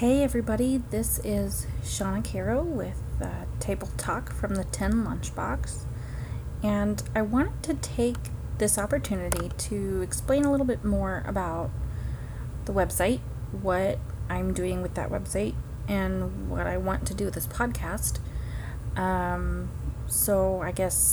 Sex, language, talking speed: female, English, 140 wpm